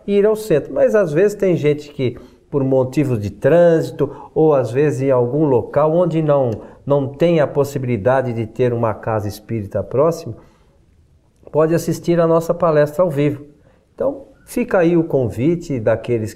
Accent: Brazilian